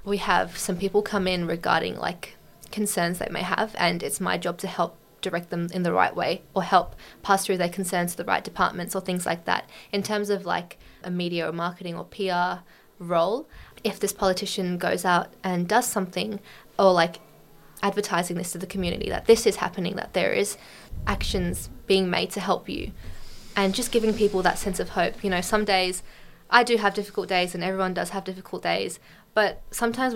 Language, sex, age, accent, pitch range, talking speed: English, female, 20-39, Australian, 180-205 Hz, 205 wpm